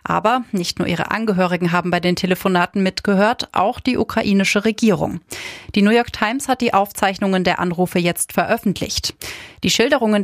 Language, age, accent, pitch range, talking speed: German, 30-49, German, 180-225 Hz, 160 wpm